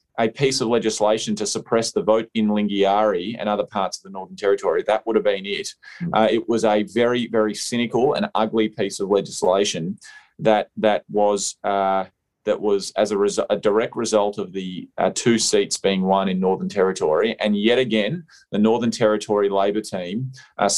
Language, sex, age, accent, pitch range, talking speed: English, male, 20-39, Australian, 100-120 Hz, 190 wpm